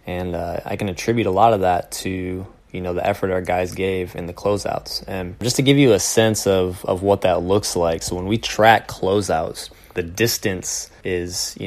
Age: 20-39